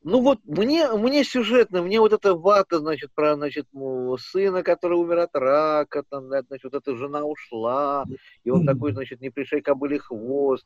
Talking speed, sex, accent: 180 wpm, male, native